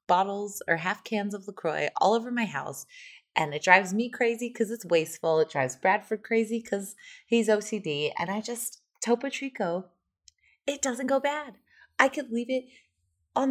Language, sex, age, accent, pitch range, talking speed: English, female, 20-39, American, 155-245 Hz, 175 wpm